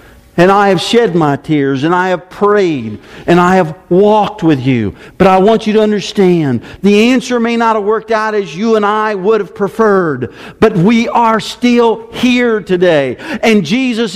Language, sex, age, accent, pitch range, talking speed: English, male, 50-69, American, 140-220 Hz, 185 wpm